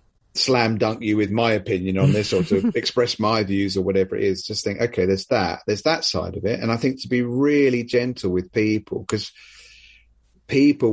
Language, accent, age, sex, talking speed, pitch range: English, British, 30-49, male, 210 wpm, 95-110 Hz